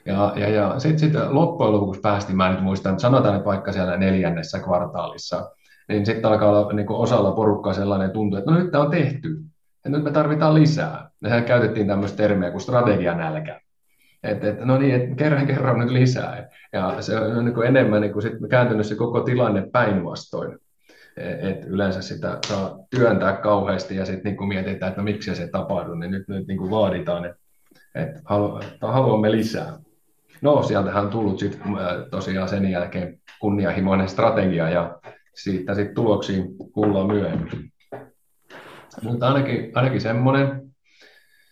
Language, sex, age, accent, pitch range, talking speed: Finnish, male, 30-49, native, 100-125 Hz, 155 wpm